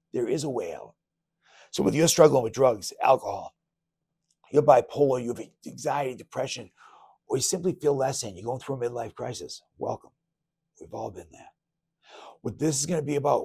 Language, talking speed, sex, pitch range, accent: English, 185 wpm, male, 125-170 Hz, American